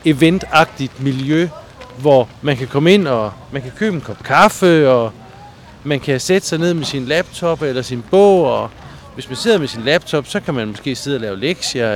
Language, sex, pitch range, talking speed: Danish, male, 120-160 Hz, 205 wpm